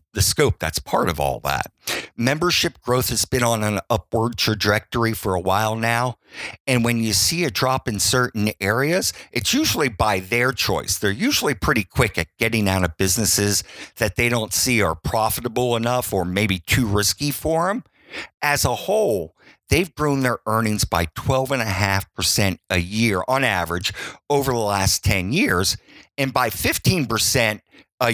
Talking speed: 165 wpm